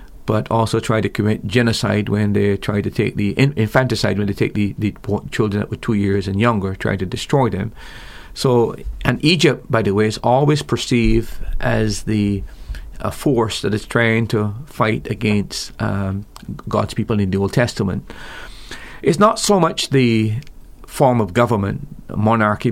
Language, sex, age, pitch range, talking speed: English, male, 40-59, 100-120 Hz, 170 wpm